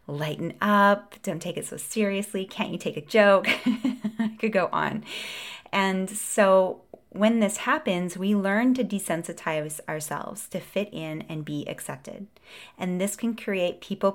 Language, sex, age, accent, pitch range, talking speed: English, female, 20-39, American, 165-205 Hz, 155 wpm